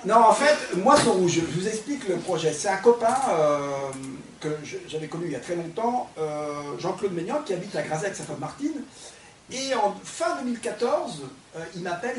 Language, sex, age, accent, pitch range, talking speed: French, male, 40-59, French, 150-200 Hz, 195 wpm